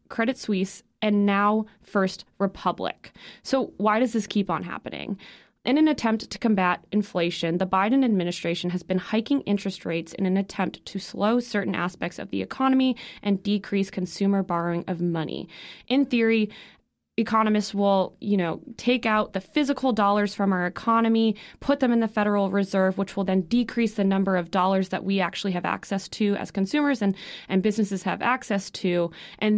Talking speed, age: 175 wpm, 20-39